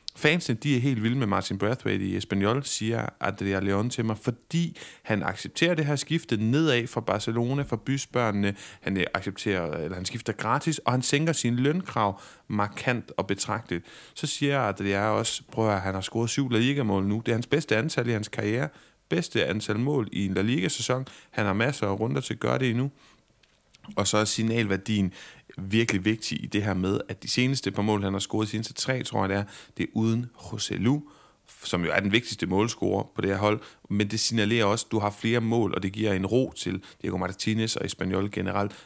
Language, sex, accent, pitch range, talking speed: Danish, male, native, 100-130 Hz, 215 wpm